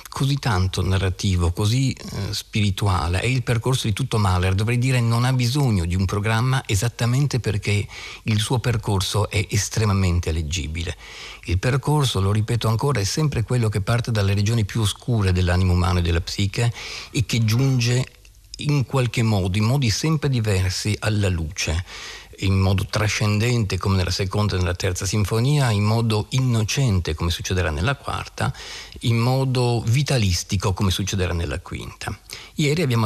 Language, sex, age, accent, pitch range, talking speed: Italian, male, 50-69, native, 95-115 Hz, 155 wpm